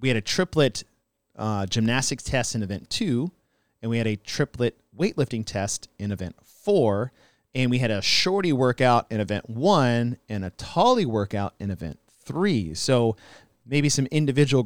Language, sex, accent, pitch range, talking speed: English, male, American, 110-135 Hz, 165 wpm